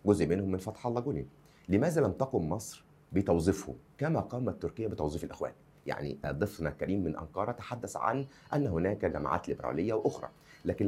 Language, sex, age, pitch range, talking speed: Arabic, male, 30-49, 85-135 Hz, 160 wpm